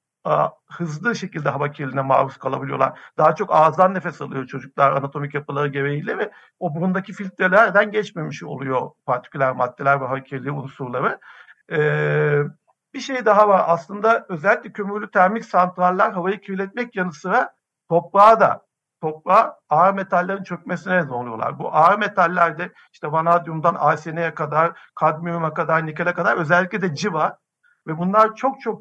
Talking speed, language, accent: 135 wpm, Turkish, native